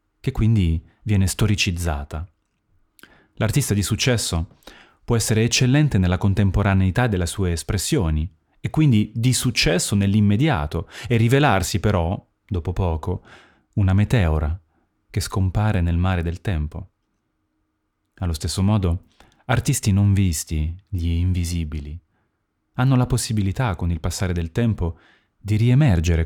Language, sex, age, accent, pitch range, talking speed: Italian, male, 30-49, native, 85-110 Hz, 115 wpm